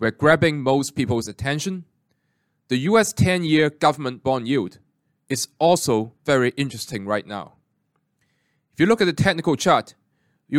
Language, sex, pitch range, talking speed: English, male, 125-160 Hz, 140 wpm